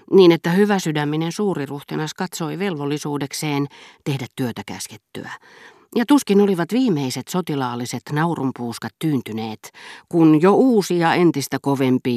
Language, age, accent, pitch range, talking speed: Finnish, 40-59, native, 125-170 Hz, 110 wpm